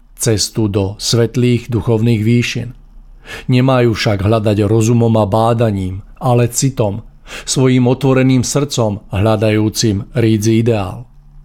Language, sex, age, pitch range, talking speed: Czech, male, 50-69, 110-125 Hz, 100 wpm